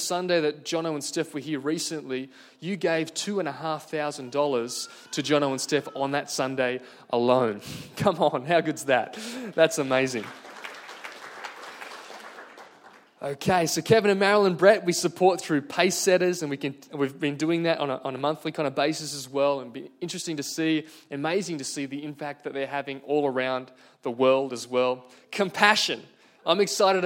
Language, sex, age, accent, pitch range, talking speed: English, male, 20-39, Australian, 140-175 Hz, 180 wpm